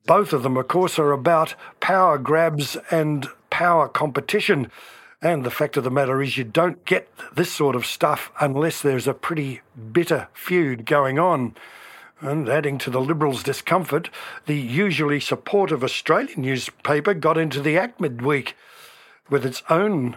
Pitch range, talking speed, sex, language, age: 140-170 Hz, 160 wpm, male, English, 60-79